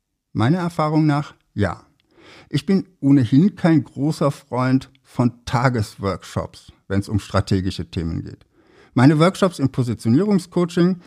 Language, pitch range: German, 110-155 Hz